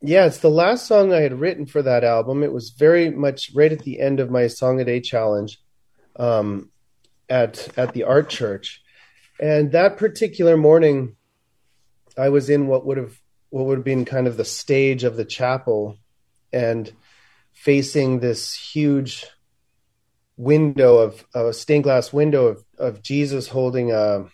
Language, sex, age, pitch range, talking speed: English, male, 30-49, 120-150 Hz, 170 wpm